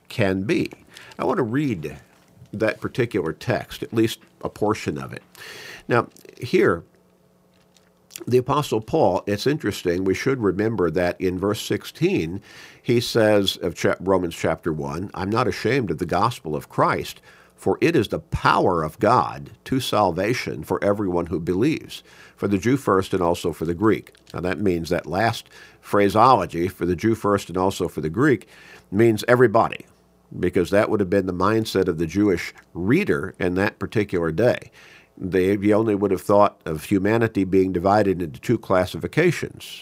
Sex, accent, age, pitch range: male, American, 50-69, 90-110 Hz